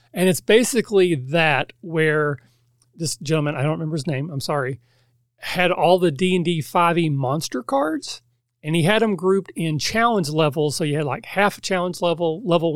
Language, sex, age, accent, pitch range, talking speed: English, male, 40-59, American, 140-170 Hz, 180 wpm